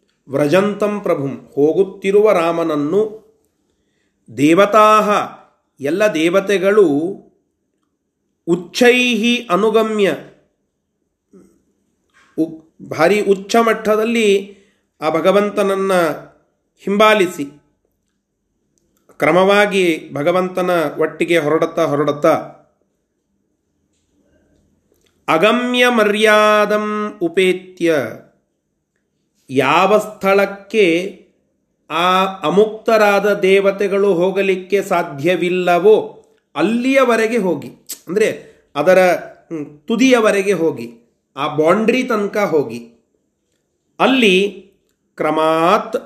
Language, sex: Kannada, male